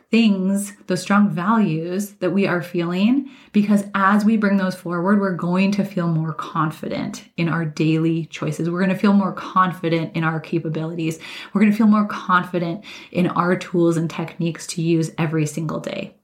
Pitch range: 170-205 Hz